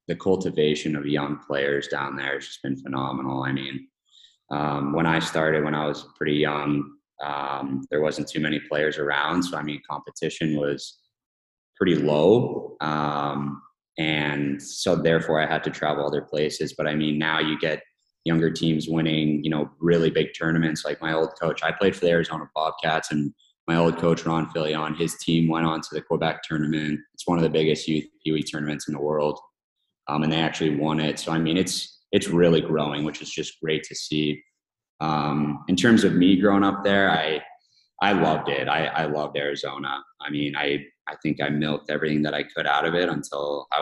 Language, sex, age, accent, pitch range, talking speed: English, male, 20-39, American, 75-80 Hz, 200 wpm